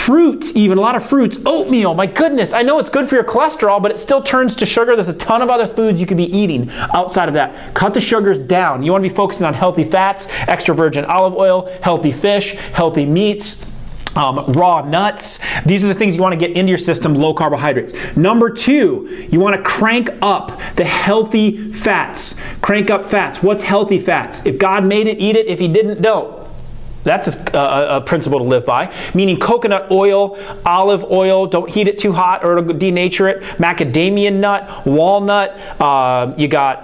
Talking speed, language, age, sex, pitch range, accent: 205 wpm, English, 30-49, male, 170-210 Hz, American